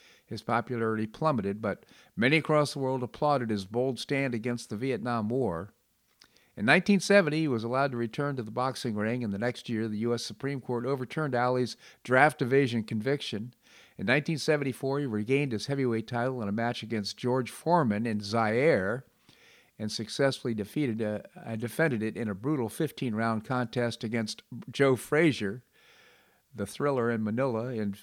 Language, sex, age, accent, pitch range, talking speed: English, male, 50-69, American, 110-140 Hz, 160 wpm